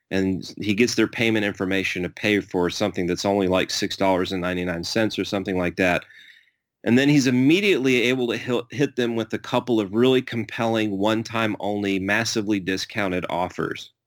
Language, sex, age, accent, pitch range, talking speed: English, male, 30-49, American, 95-120 Hz, 155 wpm